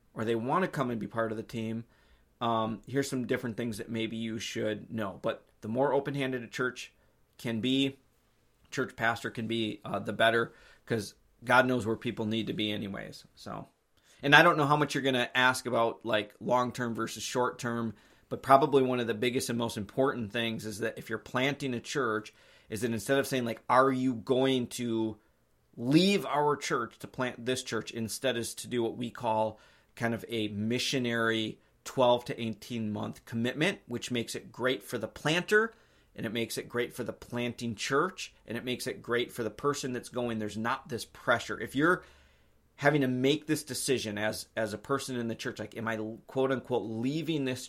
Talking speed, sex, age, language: 205 wpm, male, 30-49, English